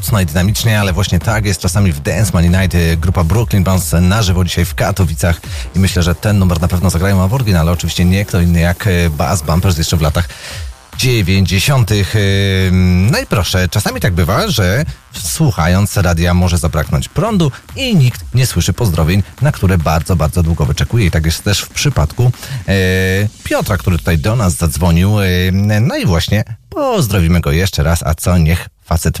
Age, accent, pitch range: 40-59, native, 85-105 Hz